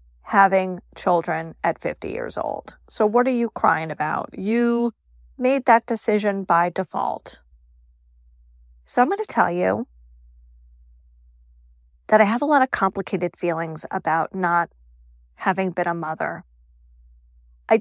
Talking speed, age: 130 wpm, 40-59